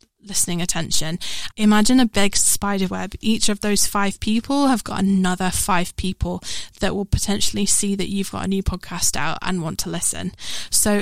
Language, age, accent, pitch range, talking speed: English, 10-29, British, 185-225 Hz, 180 wpm